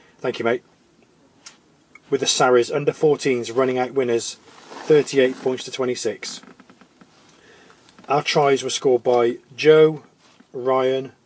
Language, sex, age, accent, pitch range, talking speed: English, male, 30-49, British, 120-140 Hz, 110 wpm